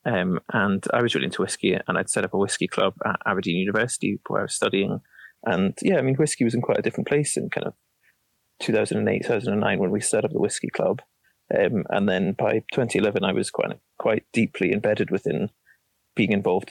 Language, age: English, 20-39